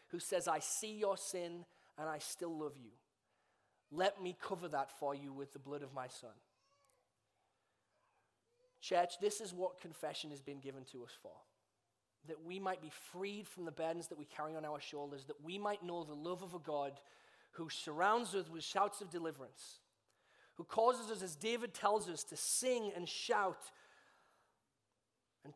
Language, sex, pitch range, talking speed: English, male, 140-175 Hz, 180 wpm